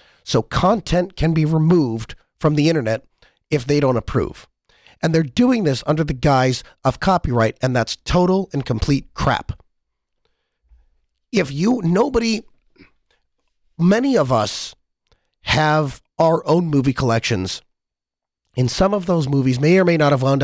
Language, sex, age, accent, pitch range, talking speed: English, male, 30-49, American, 125-165 Hz, 145 wpm